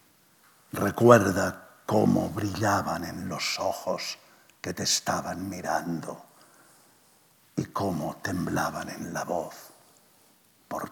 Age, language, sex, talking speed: 60-79, Spanish, male, 95 wpm